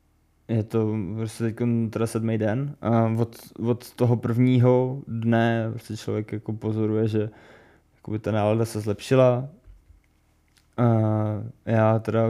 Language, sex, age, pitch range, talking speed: Czech, male, 20-39, 110-115 Hz, 125 wpm